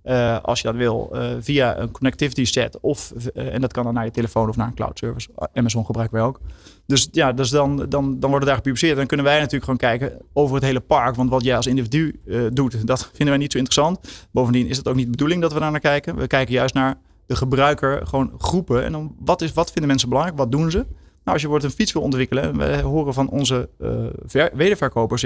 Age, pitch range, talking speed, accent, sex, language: 30-49, 120-150 Hz, 250 wpm, Dutch, male, Dutch